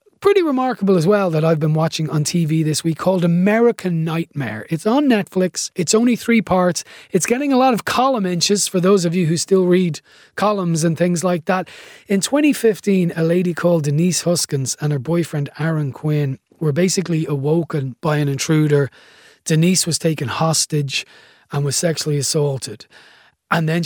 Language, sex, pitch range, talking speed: English, male, 150-185 Hz, 175 wpm